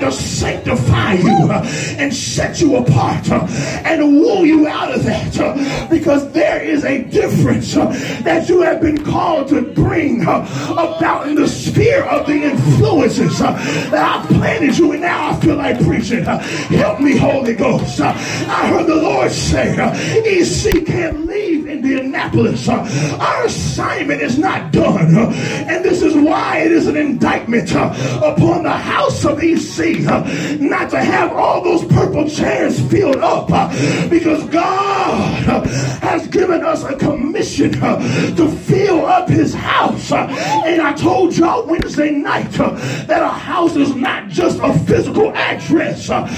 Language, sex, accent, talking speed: English, male, American, 140 wpm